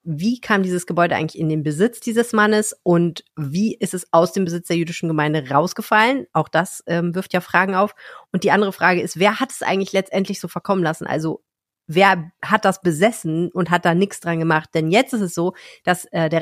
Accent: German